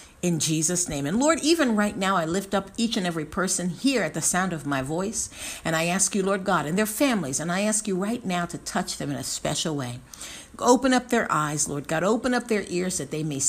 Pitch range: 155-235 Hz